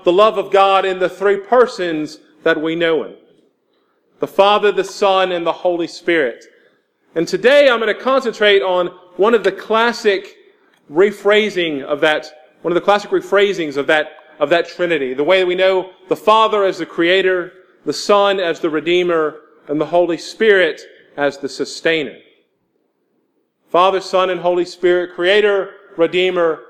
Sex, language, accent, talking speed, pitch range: male, English, American, 165 wpm, 160-205 Hz